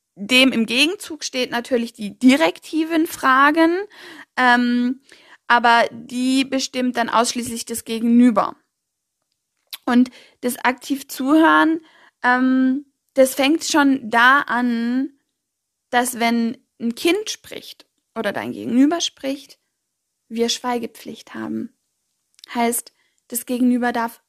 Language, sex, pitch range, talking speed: German, female, 235-275 Hz, 105 wpm